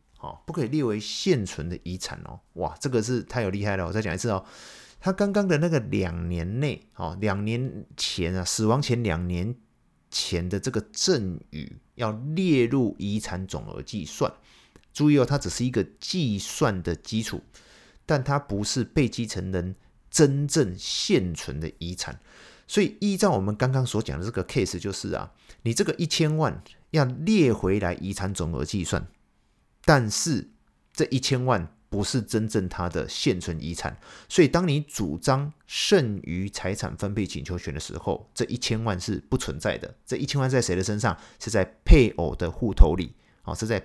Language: Chinese